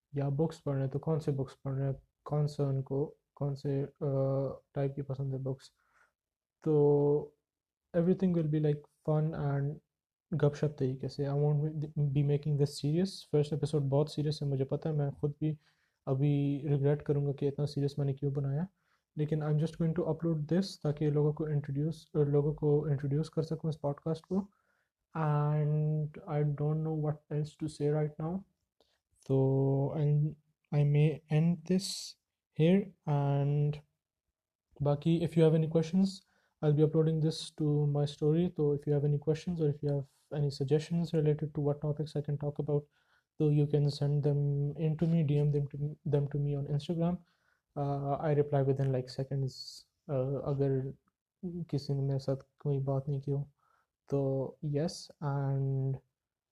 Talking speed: 135 wpm